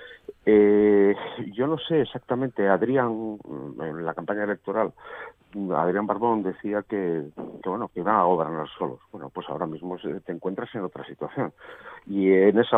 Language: Spanish